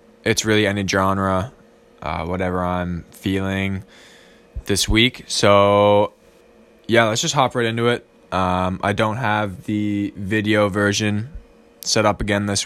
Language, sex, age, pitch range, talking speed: English, male, 20-39, 95-110 Hz, 135 wpm